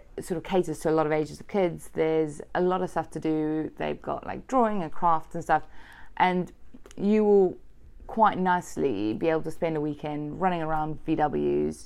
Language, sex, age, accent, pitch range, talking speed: English, female, 20-39, British, 150-195 Hz, 195 wpm